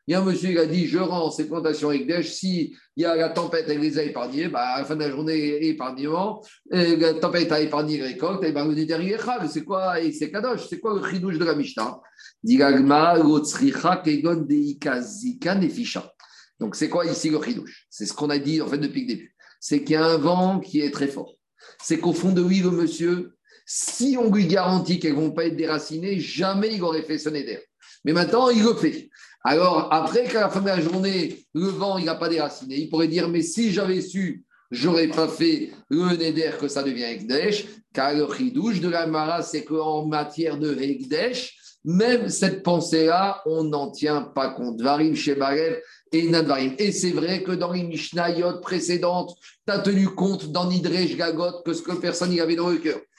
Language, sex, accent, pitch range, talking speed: French, male, French, 155-190 Hz, 210 wpm